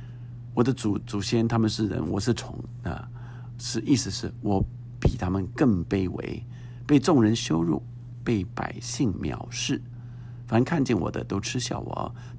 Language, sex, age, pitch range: Chinese, male, 50-69, 110-120 Hz